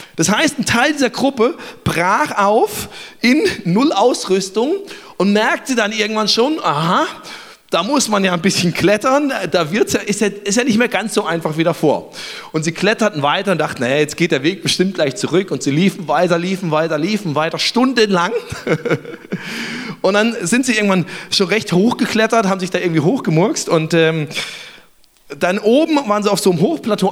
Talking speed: 185 wpm